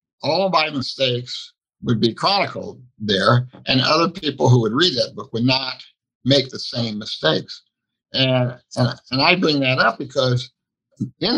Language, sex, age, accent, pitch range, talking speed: English, male, 60-79, American, 115-140 Hz, 160 wpm